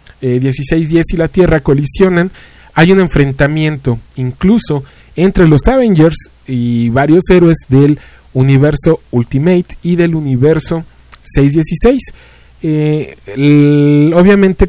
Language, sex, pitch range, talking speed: English, male, 130-170 Hz, 100 wpm